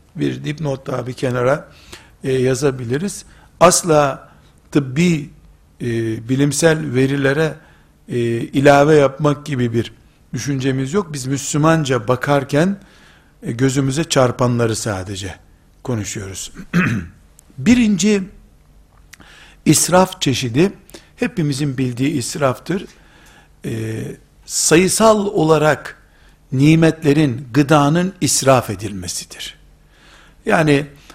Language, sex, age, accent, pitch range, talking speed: Turkish, male, 60-79, native, 125-165 Hz, 80 wpm